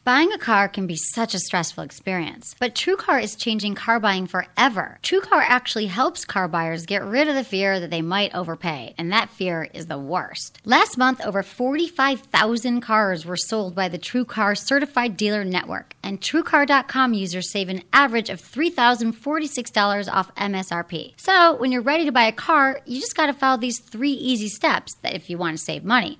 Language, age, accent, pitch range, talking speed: English, 30-49, American, 195-275 Hz, 195 wpm